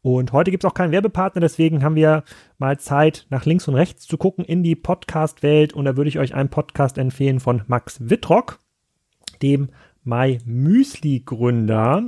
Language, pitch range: German, 130-155 Hz